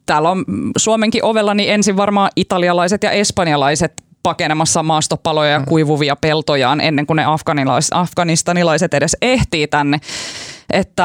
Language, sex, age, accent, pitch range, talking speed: Finnish, female, 20-39, native, 150-185 Hz, 125 wpm